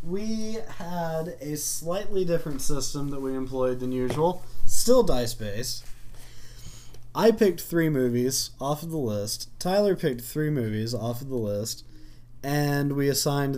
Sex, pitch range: male, 120-145 Hz